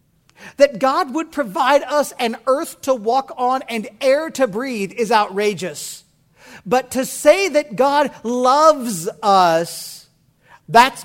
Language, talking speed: English, 130 wpm